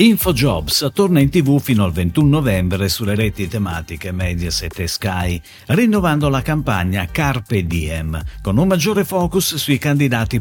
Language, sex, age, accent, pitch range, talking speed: Italian, male, 50-69, native, 95-155 Hz, 145 wpm